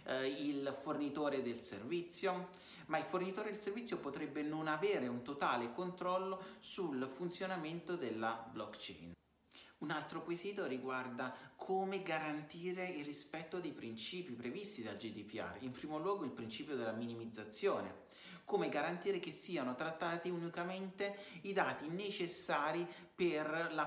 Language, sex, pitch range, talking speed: Italian, male, 130-180 Hz, 125 wpm